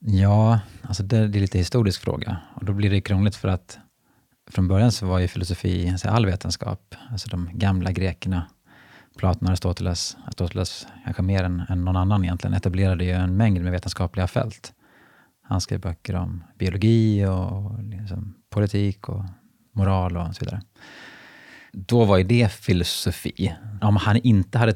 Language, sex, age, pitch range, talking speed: Swedish, male, 30-49, 95-115 Hz, 150 wpm